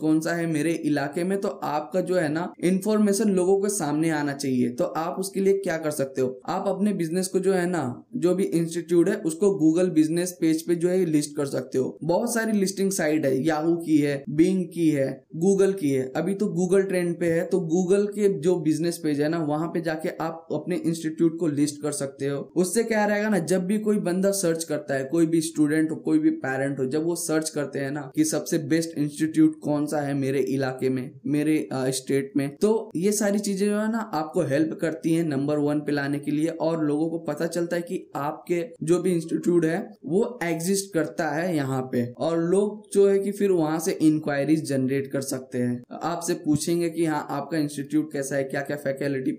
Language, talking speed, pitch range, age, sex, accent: Hindi, 215 wpm, 145-180 Hz, 10-29, male, native